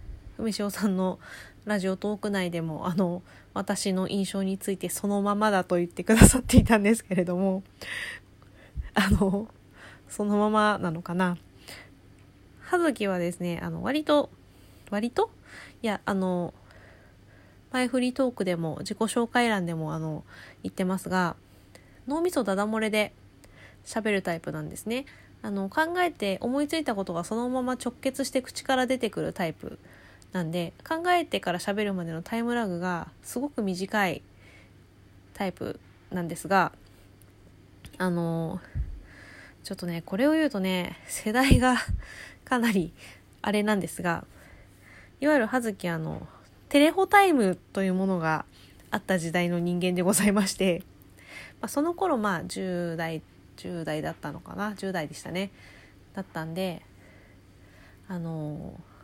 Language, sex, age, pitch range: Japanese, female, 20-39, 155-215 Hz